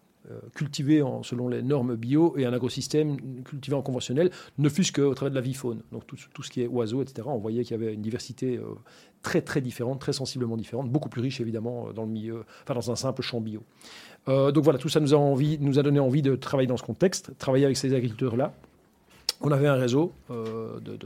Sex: male